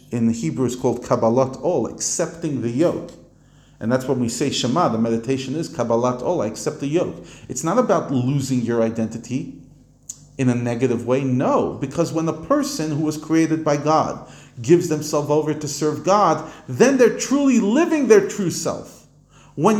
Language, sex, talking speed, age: English, male, 180 wpm, 40-59